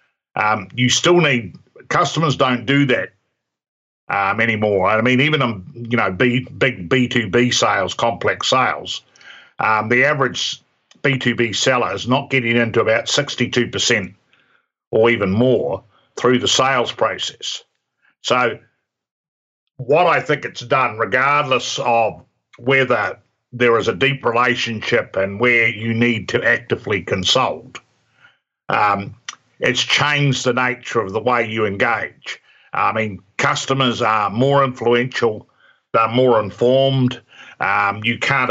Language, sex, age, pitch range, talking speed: English, male, 60-79, 110-130 Hz, 140 wpm